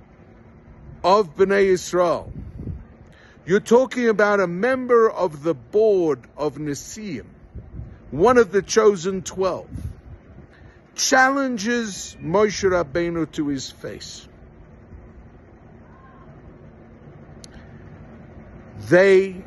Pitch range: 145-200 Hz